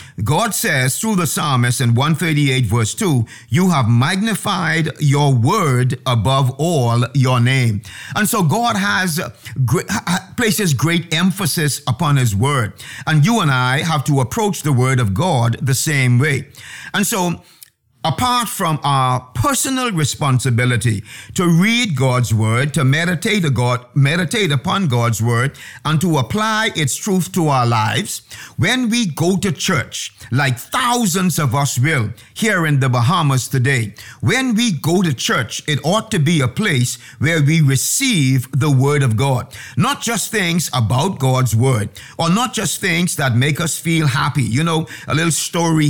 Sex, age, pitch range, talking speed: male, 50-69, 125-170 Hz, 160 wpm